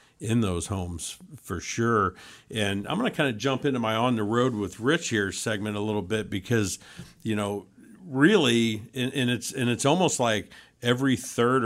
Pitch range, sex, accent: 100-125 Hz, male, American